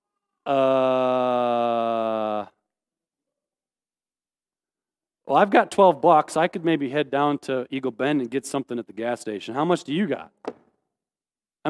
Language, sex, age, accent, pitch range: English, male, 40-59, American, 165-235 Hz